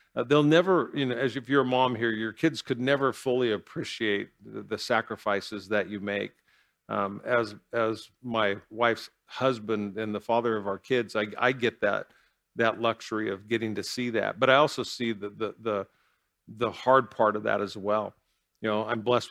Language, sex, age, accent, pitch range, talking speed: English, male, 50-69, American, 105-125 Hz, 200 wpm